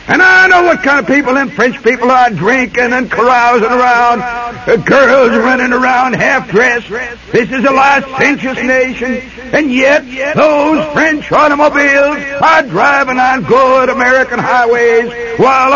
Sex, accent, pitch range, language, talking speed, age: male, American, 255-290 Hz, English, 135 wpm, 60-79